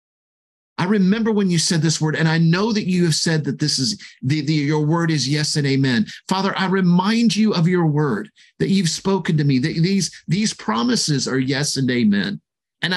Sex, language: male, English